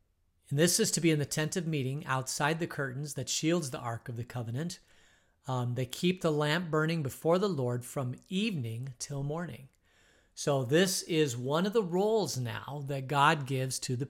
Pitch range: 125-155 Hz